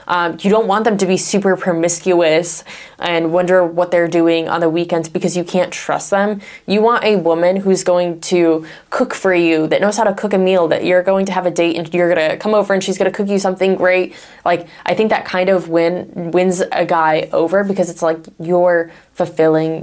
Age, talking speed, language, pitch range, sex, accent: 20-39, 230 wpm, English, 170-195 Hz, female, American